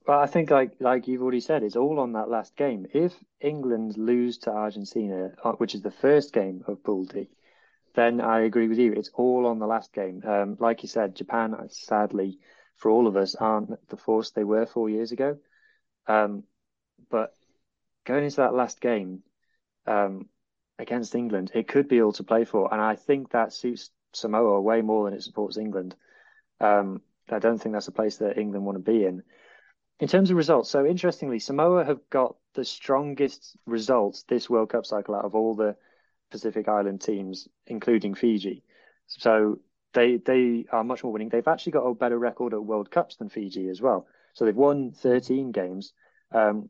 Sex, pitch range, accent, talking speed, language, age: male, 105-125 Hz, British, 190 wpm, English, 20-39